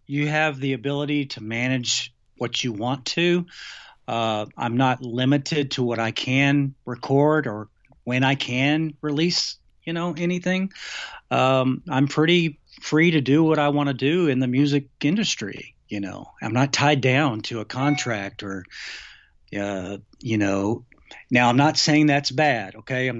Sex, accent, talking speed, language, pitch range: male, American, 165 wpm, English, 120-150 Hz